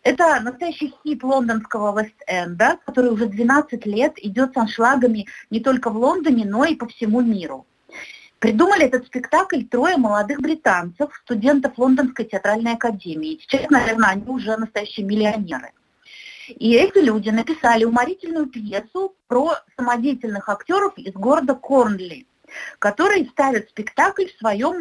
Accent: native